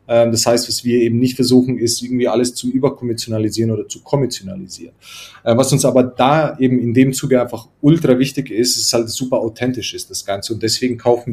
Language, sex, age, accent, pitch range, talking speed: German, male, 30-49, German, 110-125 Hz, 205 wpm